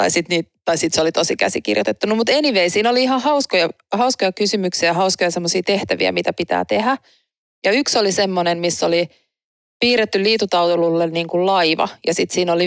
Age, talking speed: 30-49, 170 wpm